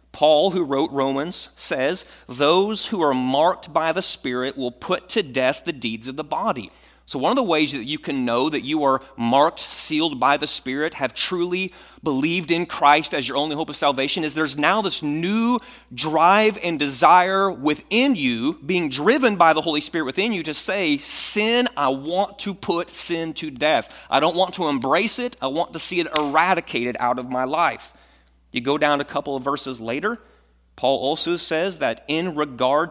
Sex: male